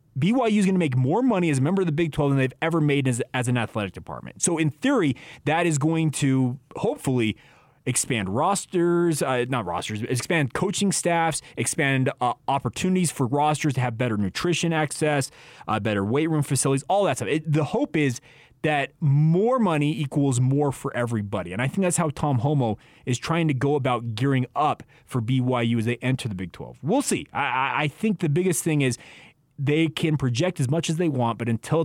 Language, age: English, 30-49